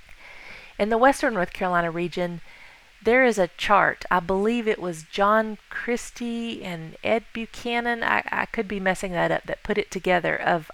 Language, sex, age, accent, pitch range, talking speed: English, female, 40-59, American, 170-215 Hz, 175 wpm